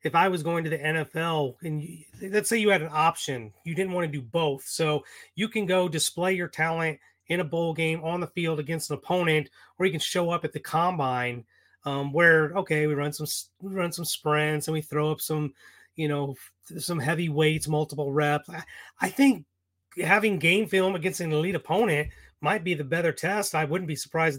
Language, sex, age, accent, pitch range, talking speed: English, male, 30-49, American, 150-180 Hz, 210 wpm